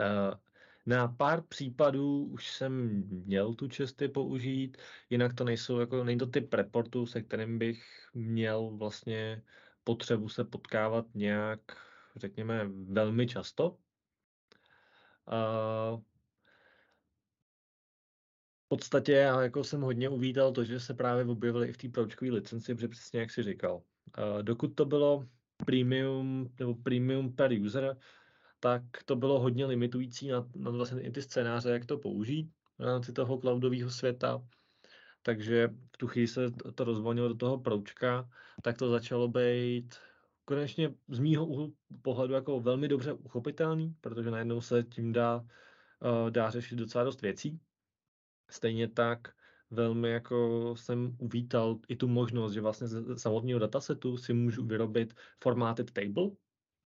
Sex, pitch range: male, 115-130 Hz